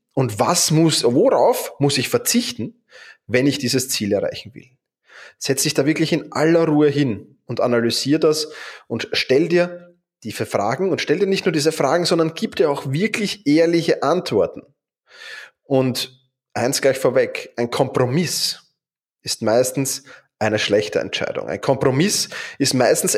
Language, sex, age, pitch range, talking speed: German, male, 20-39, 135-180 Hz, 150 wpm